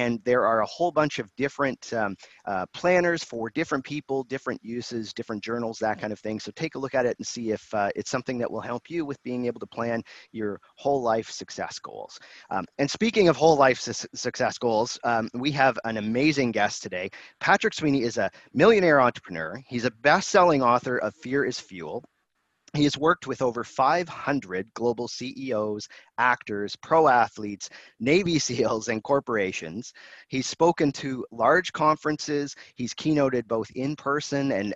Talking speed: 180 wpm